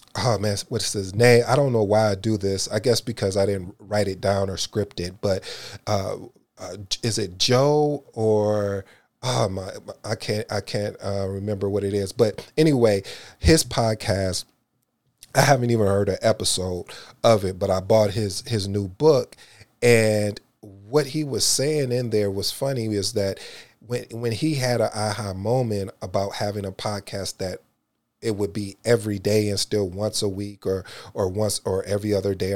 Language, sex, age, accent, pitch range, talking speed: English, male, 30-49, American, 100-120 Hz, 185 wpm